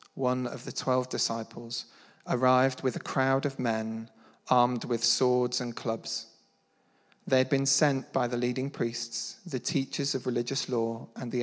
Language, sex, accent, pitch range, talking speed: English, male, British, 115-140 Hz, 165 wpm